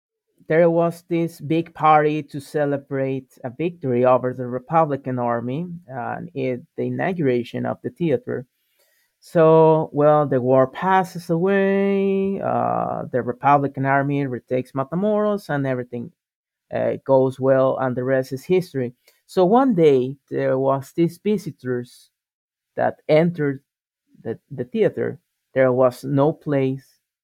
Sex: male